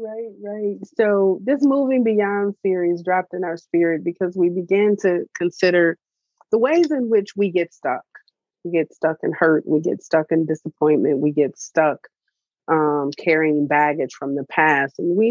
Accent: American